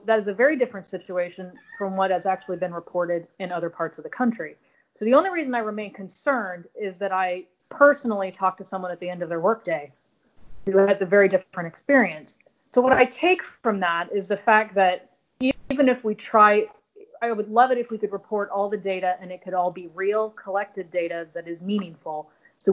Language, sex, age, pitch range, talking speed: English, female, 30-49, 185-225 Hz, 215 wpm